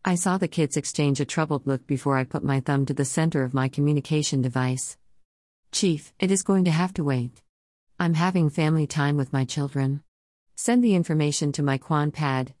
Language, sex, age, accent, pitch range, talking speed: English, female, 50-69, American, 130-165 Hz, 200 wpm